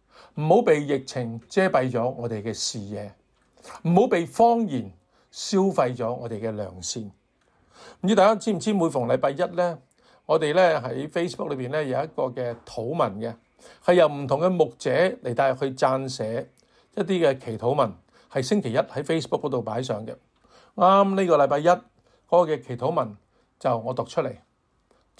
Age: 50-69